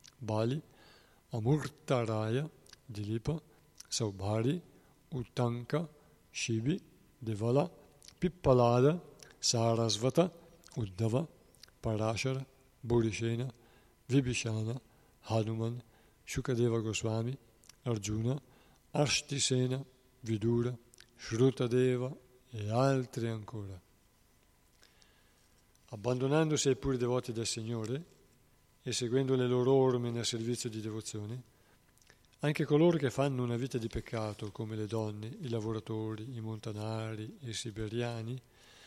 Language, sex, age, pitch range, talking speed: Italian, male, 60-79, 115-135 Hz, 85 wpm